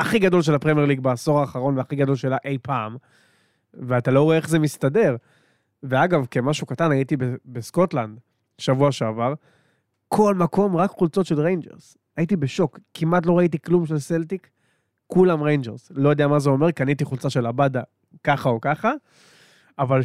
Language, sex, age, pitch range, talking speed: Hebrew, male, 20-39, 130-160 Hz, 165 wpm